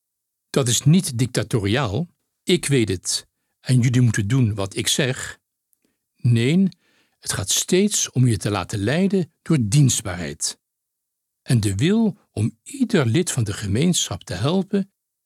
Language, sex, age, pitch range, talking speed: Dutch, male, 60-79, 110-165 Hz, 140 wpm